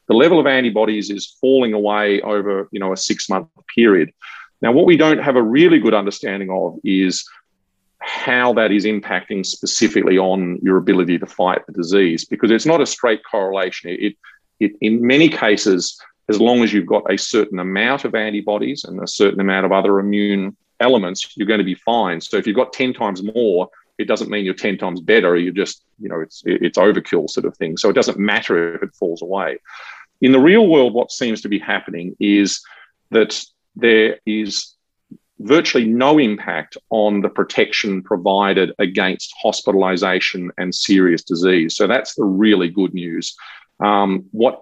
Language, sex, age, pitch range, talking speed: English, male, 40-59, 95-110 Hz, 185 wpm